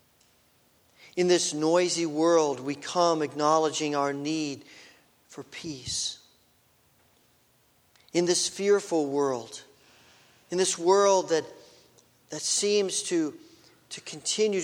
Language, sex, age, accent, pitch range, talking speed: English, male, 50-69, American, 130-175 Hz, 100 wpm